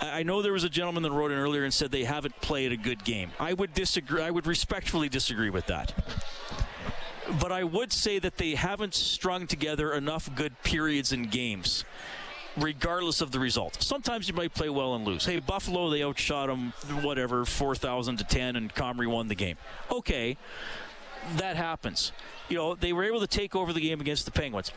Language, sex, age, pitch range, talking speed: English, male, 40-59, 130-175 Hz, 200 wpm